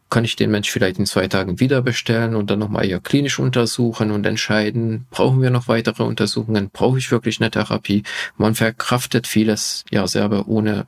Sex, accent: male, German